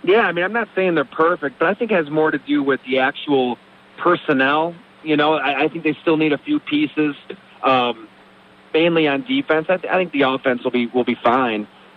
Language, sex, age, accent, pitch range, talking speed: English, male, 40-59, American, 135-170 Hz, 225 wpm